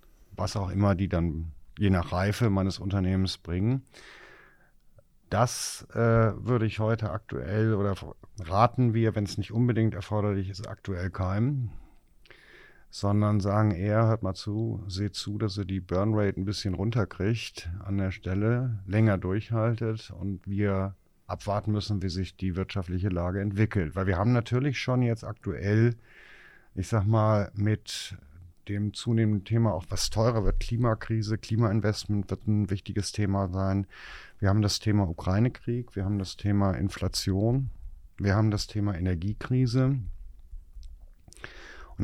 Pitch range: 95-110 Hz